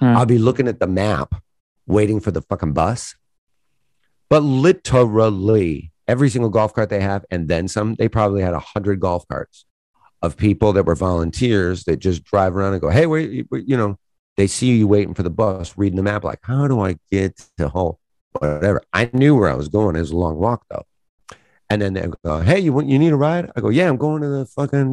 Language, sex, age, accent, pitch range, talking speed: English, male, 50-69, American, 85-115 Hz, 230 wpm